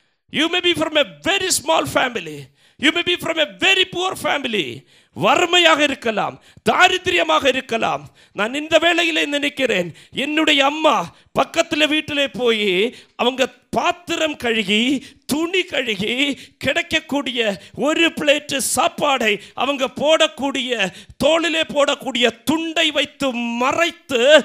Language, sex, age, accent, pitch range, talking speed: Tamil, male, 50-69, native, 225-300 Hz, 115 wpm